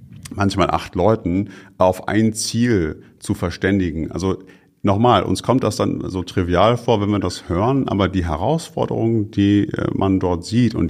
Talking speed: 160 wpm